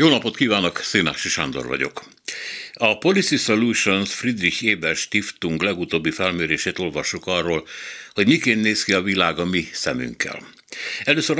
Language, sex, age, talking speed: Hungarian, male, 60-79, 135 wpm